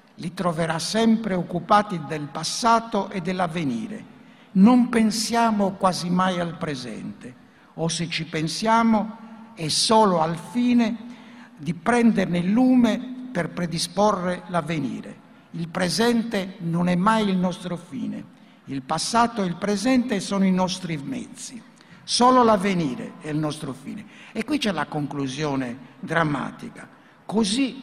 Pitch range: 170-230 Hz